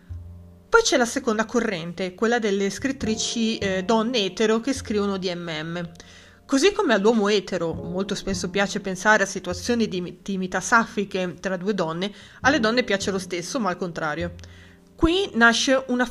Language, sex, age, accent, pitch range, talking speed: Italian, female, 30-49, native, 190-235 Hz, 155 wpm